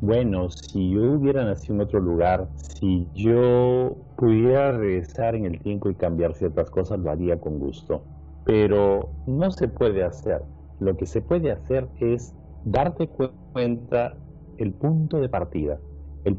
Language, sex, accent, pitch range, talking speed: Spanish, male, Mexican, 80-120 Hz, 150 wpm